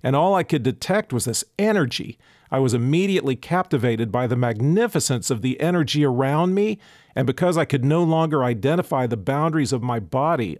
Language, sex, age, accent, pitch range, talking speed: English, male, 50-69, American, 125-165 Hz, 180 wpm